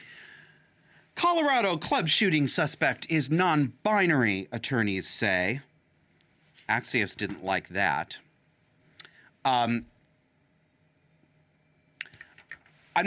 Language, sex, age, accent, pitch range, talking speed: English, male, 40-59, American, 115-160 Hz, 65 wpm